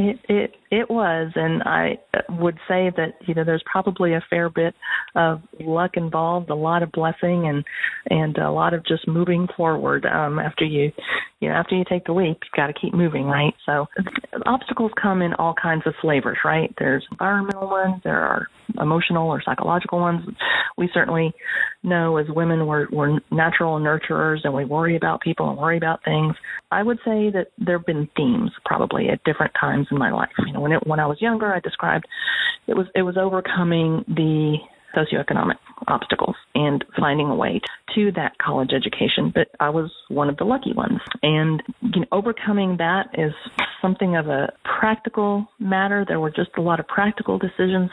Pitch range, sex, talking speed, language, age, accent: 160-195 Hz, female, 190 wpm, English, 40-59, American